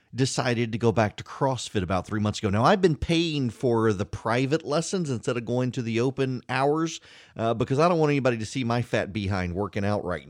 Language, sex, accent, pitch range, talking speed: English, male, American, 115-150 Hz, 225 wpm